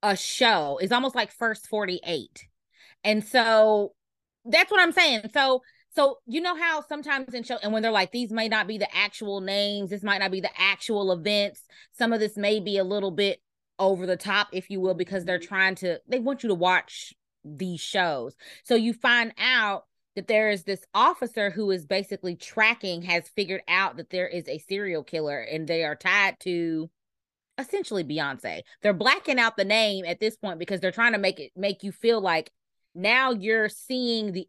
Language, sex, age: English, female, 20-39